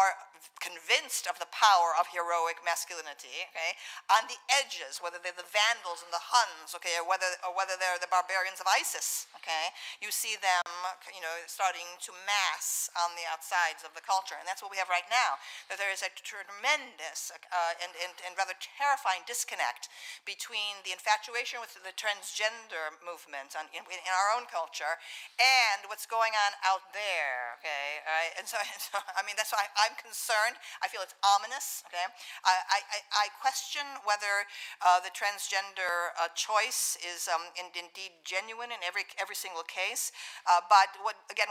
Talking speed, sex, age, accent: 175 wpm, female, 50-69, American